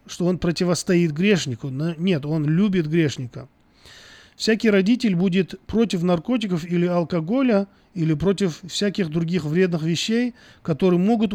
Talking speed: 120 wpm